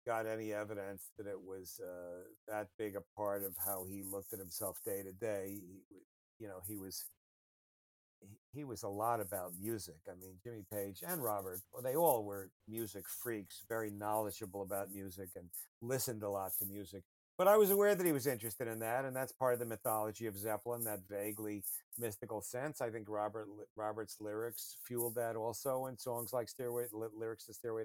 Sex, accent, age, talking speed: male, American, 50-69, 200 wpm